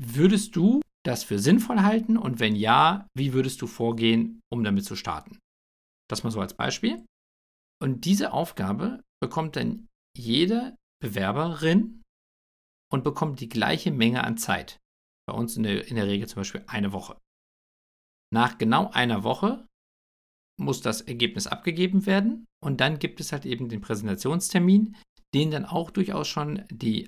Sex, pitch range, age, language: male, 110-180 Hz, 50-69, German